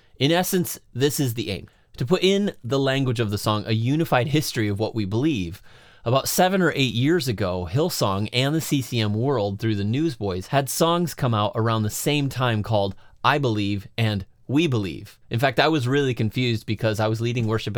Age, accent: 30-49, American